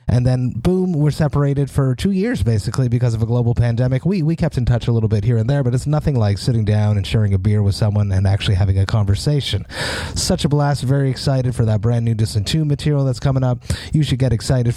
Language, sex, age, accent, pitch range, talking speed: English, male, 30-49, American, 110-145 Hz, 250 wpm